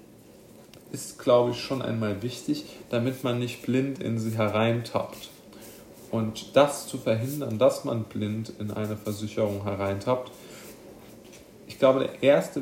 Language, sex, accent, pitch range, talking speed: German, male, German, 105-115 Hz, 135 wpm